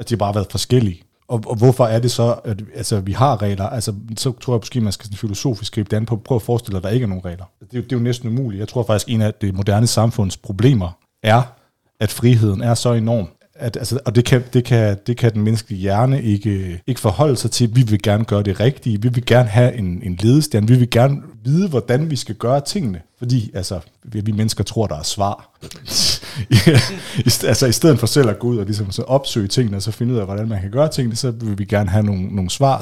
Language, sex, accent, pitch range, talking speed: Danish, male, native, 105-125 Hz, 255 wpm